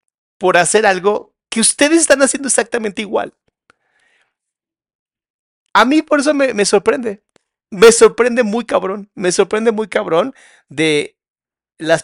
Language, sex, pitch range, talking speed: Spanish, male, 135-225 Hz, 130 wpm